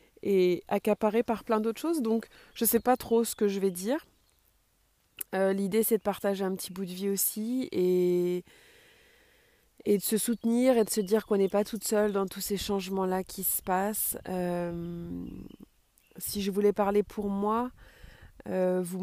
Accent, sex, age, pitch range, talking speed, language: French, female, 20-39, 180-215 Hz, 185 wpm, French